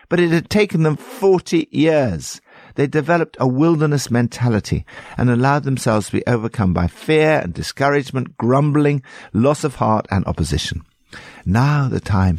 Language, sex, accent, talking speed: English, male, British, 150 wpm